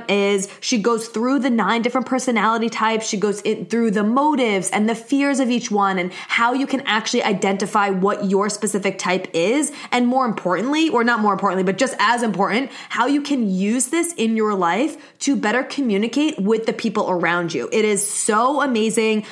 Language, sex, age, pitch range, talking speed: English, female, 20-39, 200-245 Hz, 195 wpm